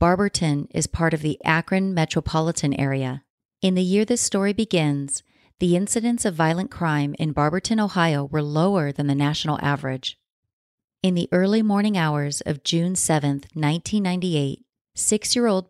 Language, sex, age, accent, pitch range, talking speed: English, female, 30-49, American, 145-180 Hz, 145 wpm